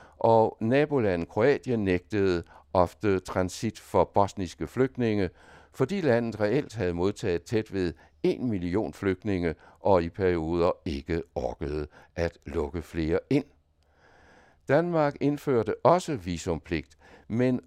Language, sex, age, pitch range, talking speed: Danish, male, 60-79, 80-110 Hz, 110 wpm